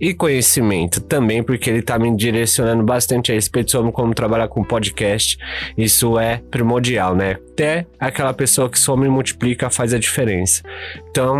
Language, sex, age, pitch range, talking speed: Portuguese, male, 20-39, 110-135 Hz, 165 wpm